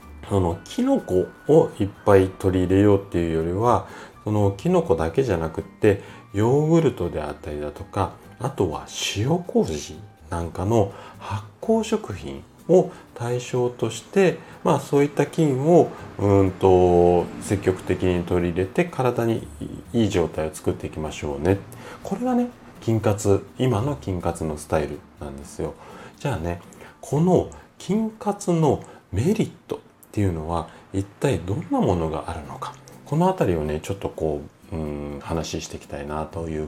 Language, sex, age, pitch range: Japanese, male, 30-49, 80-120 Hz